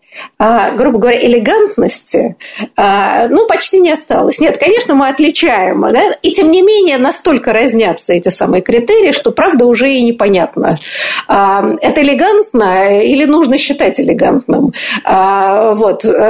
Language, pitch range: Russian, 210-310 Hz